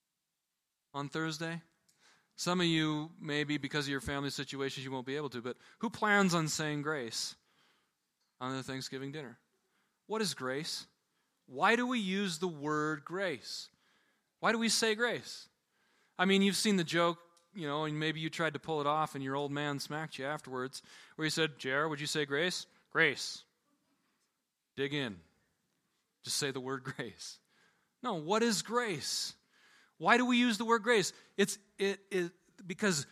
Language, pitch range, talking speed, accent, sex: English, 150-200 Hz, 170 wpm, American, male